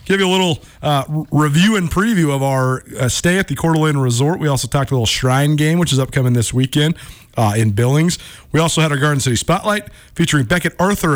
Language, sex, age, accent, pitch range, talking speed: English, male, 40-59, American, 115-155 Hz, 220 wpm